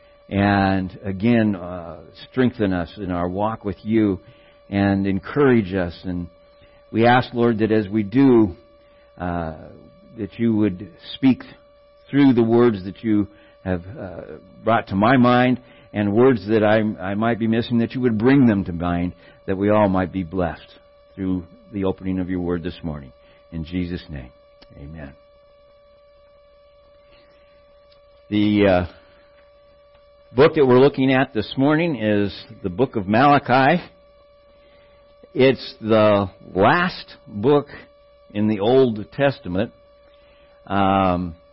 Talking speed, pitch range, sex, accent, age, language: 135 wpm, 95-140 Hz, male, American, 60-79, English